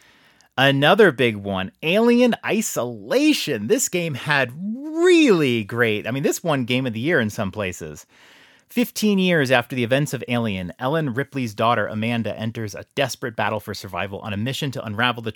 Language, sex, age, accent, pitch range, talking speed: English, male, 30-49, American, 110-145 Hz, 170 wpm